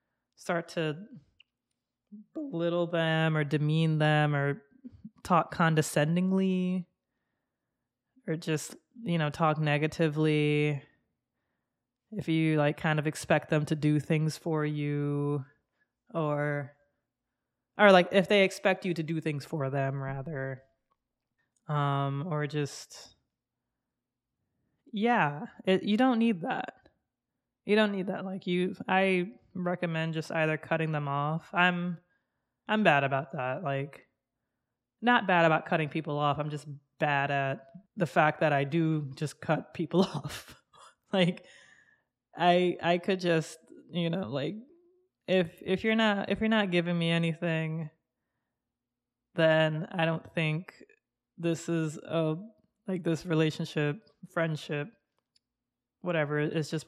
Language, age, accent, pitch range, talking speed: English, 20-39, American, 145-185 Hz, 125 wpm